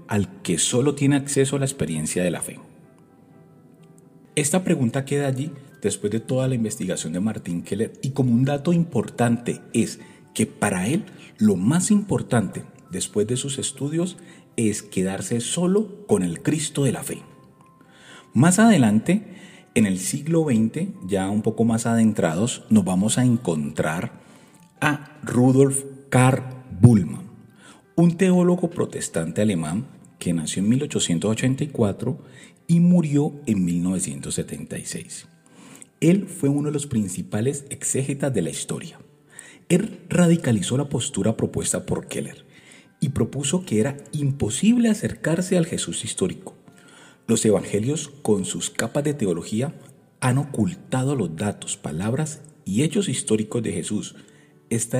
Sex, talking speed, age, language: male, 135 wpm, 40-59, Spanish